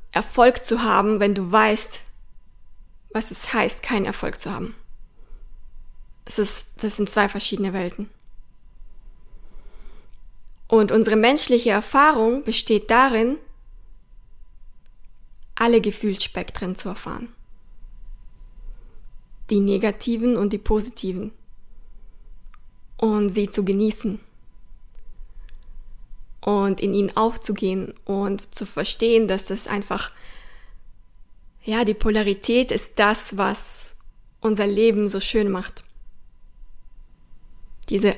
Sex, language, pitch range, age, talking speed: female, German, 190-230 Hz, 20-39, 95 wpm